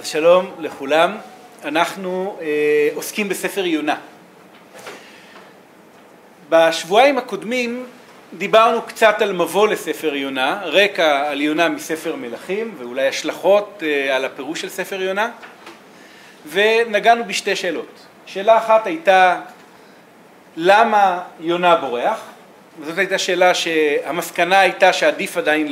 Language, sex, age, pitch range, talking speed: Hebrew, male, 40-59, 165-225 Hz, 105 wpm